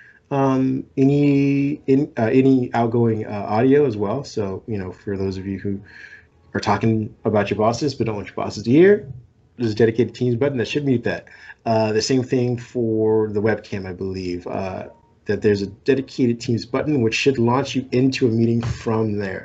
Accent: American